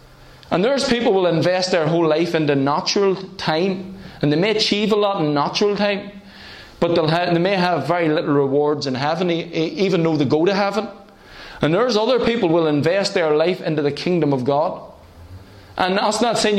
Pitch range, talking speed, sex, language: 160-210 Hz, 200 wpm, male, English